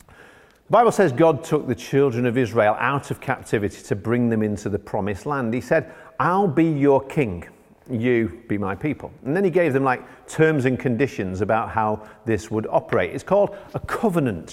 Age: 40-59